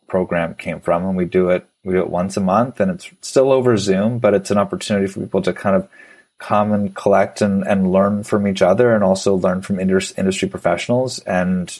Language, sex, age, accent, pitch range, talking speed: English, male, 30-49, American, 95-120 Hz, 220 wpm